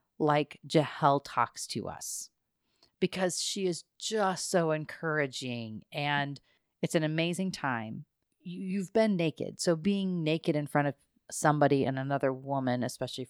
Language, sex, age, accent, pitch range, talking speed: English, female, 40-59, American, 135-170 Hz, 135 wpm